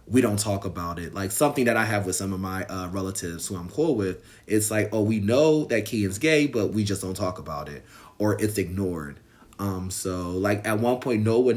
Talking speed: 235 wpm